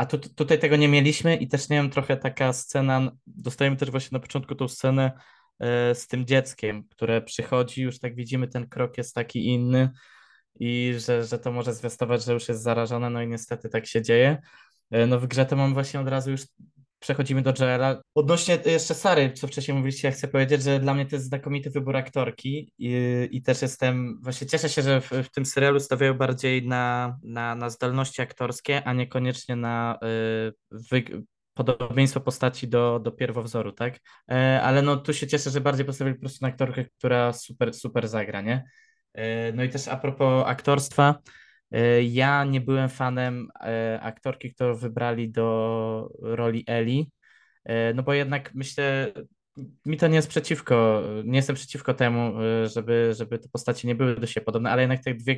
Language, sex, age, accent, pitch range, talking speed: Polish, male, 20-39, native, 120-135 Hz, 185 wpm